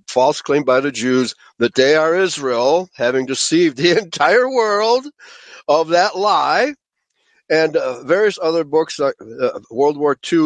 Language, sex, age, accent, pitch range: Chinese, male, 60-79, American, 130-170 Hz